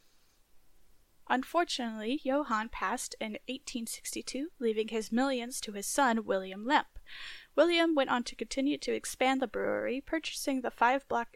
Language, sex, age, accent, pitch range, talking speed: English, female, 10-29, American, 225-295 Hz, 130 wpm